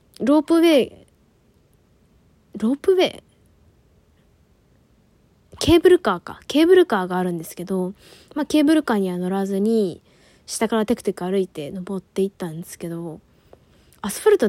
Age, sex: 20-39, female